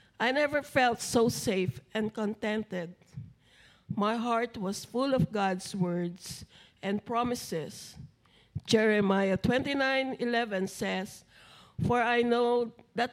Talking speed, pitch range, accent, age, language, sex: 110 wpm, 190-235 Hz, Filipino, 50-69, English, female